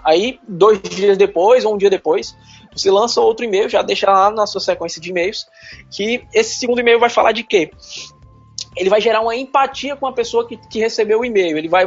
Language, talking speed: Portuguese, 215 wpm